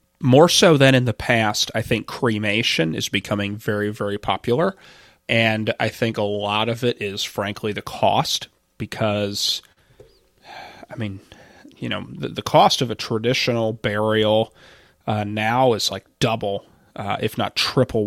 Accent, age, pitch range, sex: American, 30-49, 100-115 Hz, male